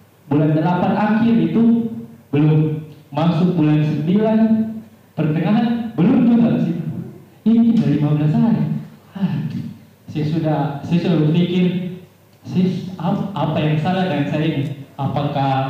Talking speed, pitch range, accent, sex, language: 115 wpm, 145-195 Hz, native, male, Indonesian